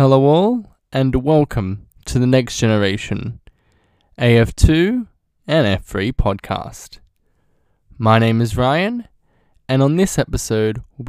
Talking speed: 115 wpm